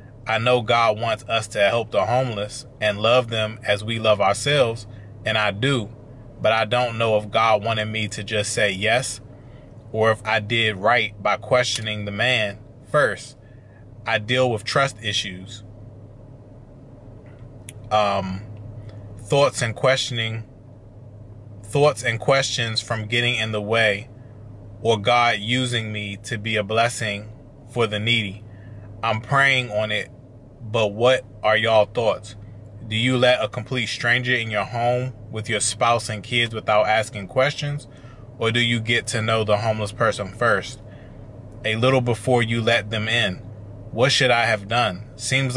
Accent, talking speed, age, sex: American, 155 wpm, 20-39, male